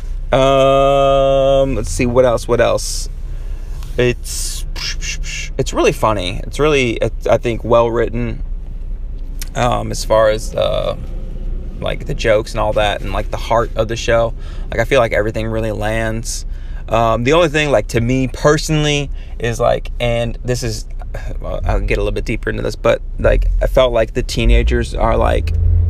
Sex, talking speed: male, 165 wpm